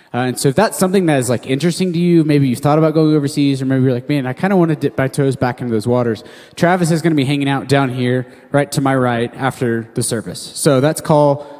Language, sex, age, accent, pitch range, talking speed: English, male, 20-39, American, 125-150 Hz, 280 wpm